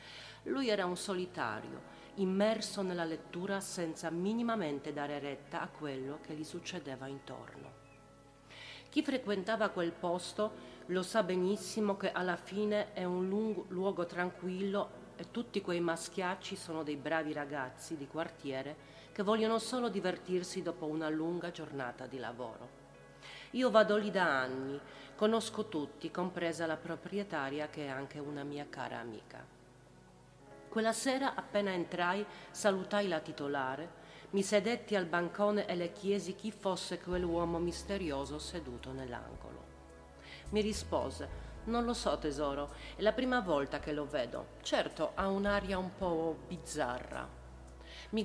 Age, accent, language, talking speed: 40-59, native, Italian, 135 wpm